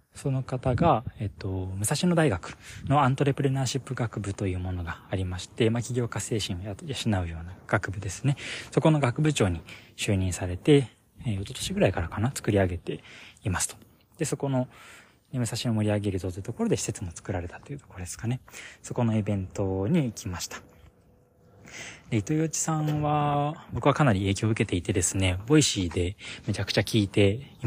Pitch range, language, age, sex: 95-125 Hz, Japanese, 20-39, male